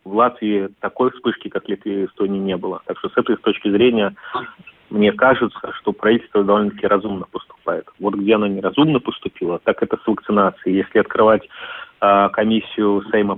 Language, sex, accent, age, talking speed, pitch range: Russian, male, native, 30-49, 170 wpm, 100-115 Hz